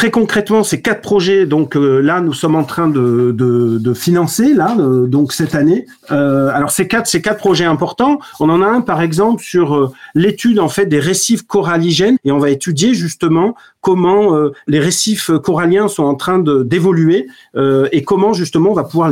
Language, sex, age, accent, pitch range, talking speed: French, male, 40-59, French, 145-195 Hz, 205 wpm